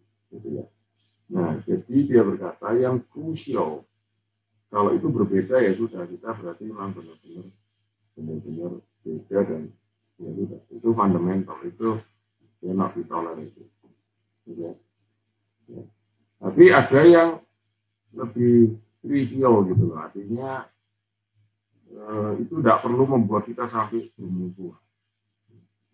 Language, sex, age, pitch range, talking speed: Indonesian, male, 50-69, 100-115 Hz, 100 wpm